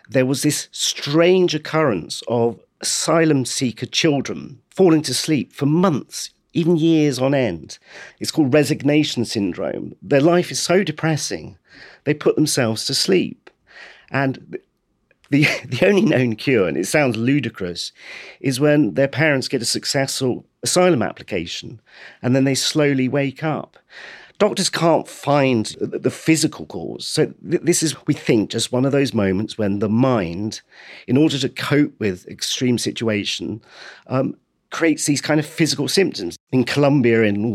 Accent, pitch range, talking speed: British, 120-155 Hz, 150 wpm